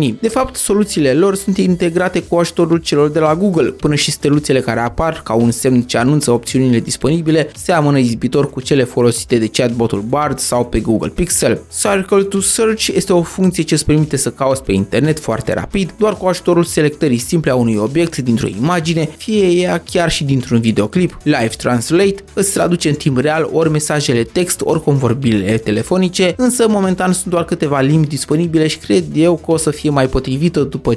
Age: 20-39